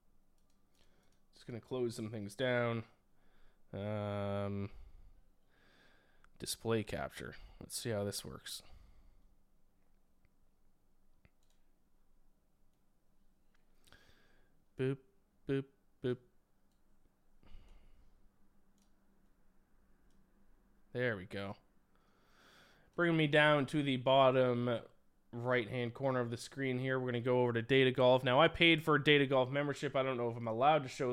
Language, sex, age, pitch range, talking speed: English, male, 20-39, 115-145 Hz, 110 wpm